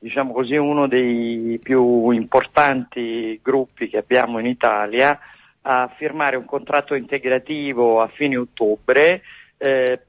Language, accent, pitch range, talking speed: Italian, native, 125-160 Hz, 120 wpm